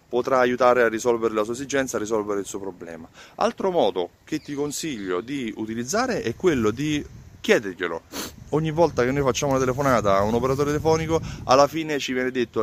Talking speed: 185 wpm